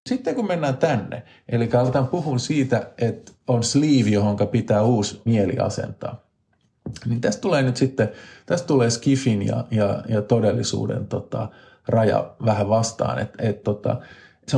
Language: Finnish